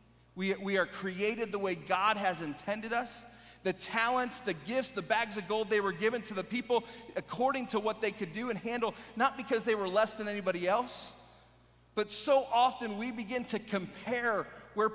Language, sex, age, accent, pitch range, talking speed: English, male, 30-49, American, 190-235 Hz, 195 wpm